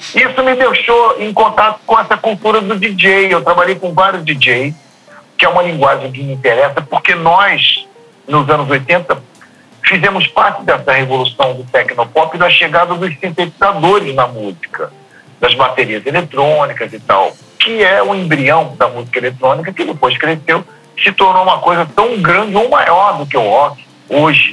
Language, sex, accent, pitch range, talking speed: Portuguese, male, Brazilian, 140-200 Hz, 170 wpm